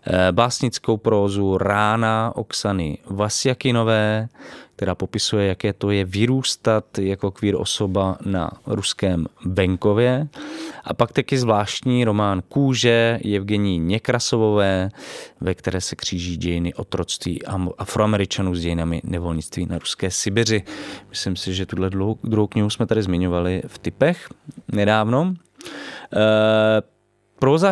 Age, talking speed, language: 20-39, 110 wpm, Czech